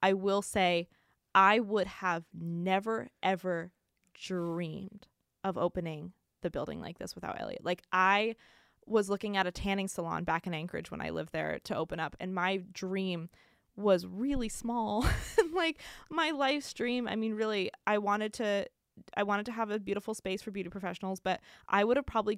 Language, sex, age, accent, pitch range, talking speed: English, female, 20-39, American, 185-225 Hz, 175 wpm